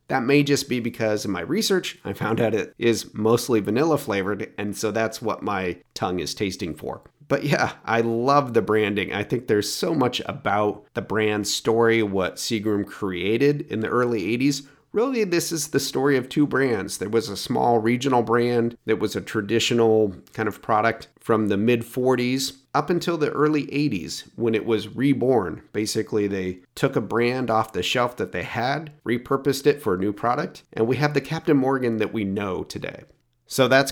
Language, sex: English, male